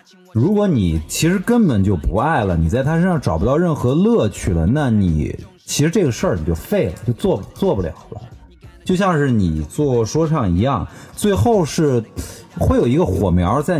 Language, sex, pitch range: Chinese, male, 95-150 Hz